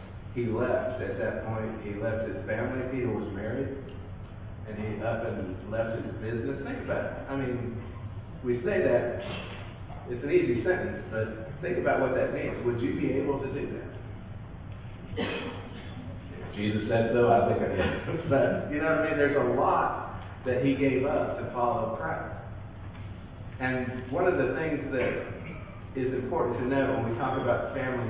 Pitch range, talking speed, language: 105-125 Hz, 175 wpm, English